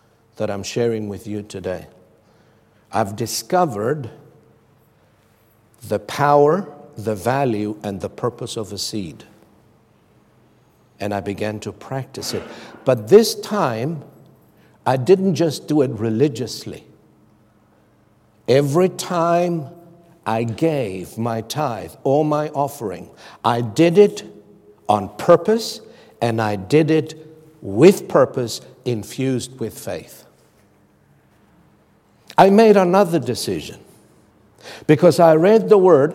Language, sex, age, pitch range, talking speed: English, male, 60-79, 115-170 Hz, 110 wpm